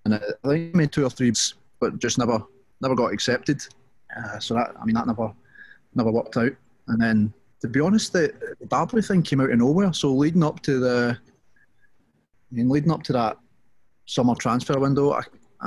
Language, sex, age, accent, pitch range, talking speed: English, male, 30-49, British, 110-130 Hz, 190 wpm